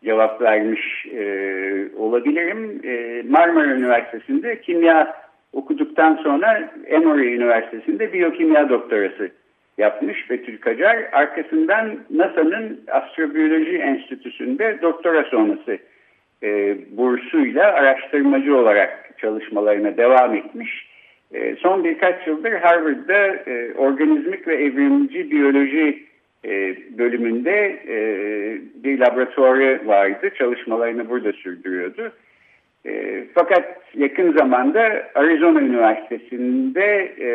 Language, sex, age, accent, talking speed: Turkish, male, 60-79, native, 85 wpm